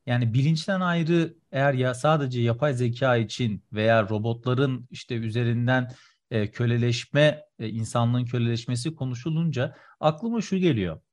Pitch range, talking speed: 125-155 Hz, 120 wpm